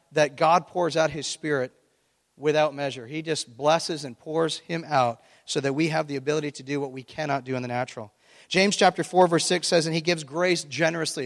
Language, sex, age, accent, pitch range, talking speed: English, male, 40-59, American, 145-180 Hz, 220 wpm